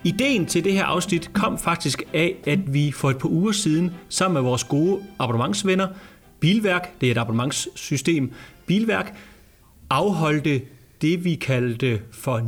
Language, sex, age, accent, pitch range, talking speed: Danish, male, 30-49, native, 130-180 Hz, 150 wpm